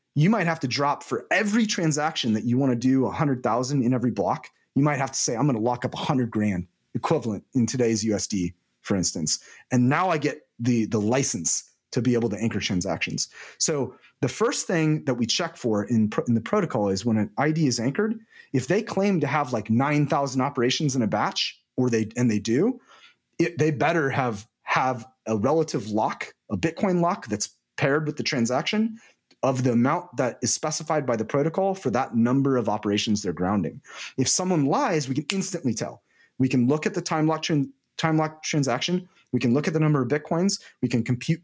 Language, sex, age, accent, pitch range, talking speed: English, male, 30-49, American, 115-155 Hz, 205 wpm